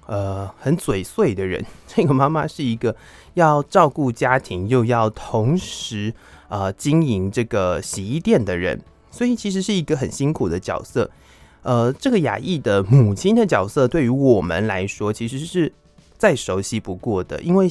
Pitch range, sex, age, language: 105-150 Hz, male, 20-39, Chinese